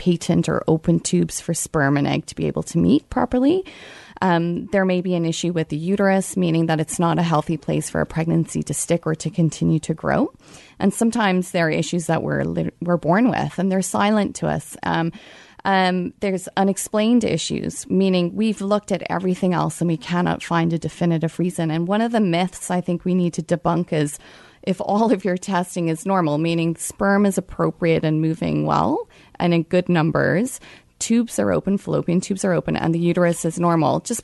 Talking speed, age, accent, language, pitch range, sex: 205 wpm, 30-49, American, English, 165-195 Hz, female